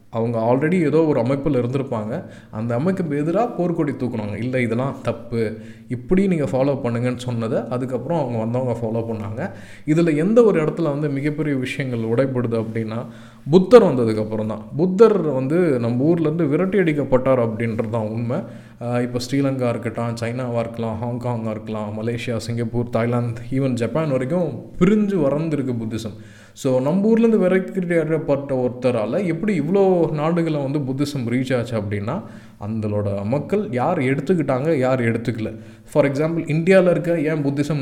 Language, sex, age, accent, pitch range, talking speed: Tamil, male, 20-39, native, 115-160 Hz, 140 wpm